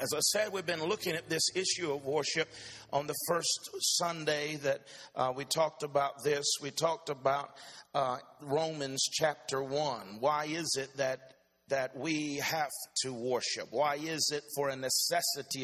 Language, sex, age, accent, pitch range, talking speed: English, male, 50-69, American, 145-170 Hz, 165 wpm